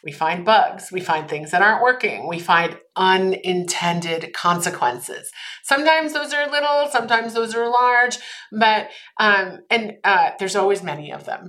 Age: 30-49